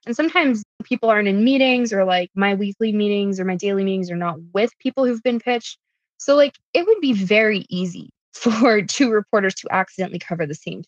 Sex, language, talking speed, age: female, English, 205 wpm, 20-39